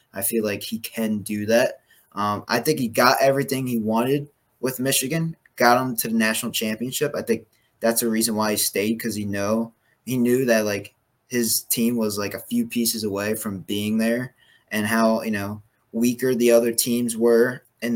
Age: 20-39